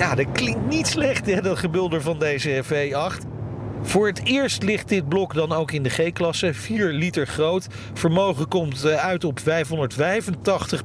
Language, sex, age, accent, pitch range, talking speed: Dutch, male, 40-59, Dutch, 135-185 Hz, 165 wpm